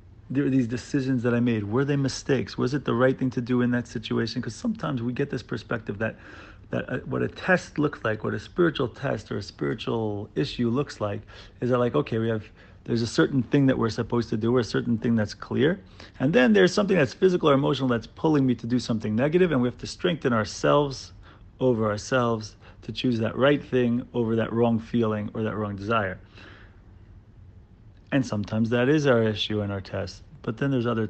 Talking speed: 215 wpm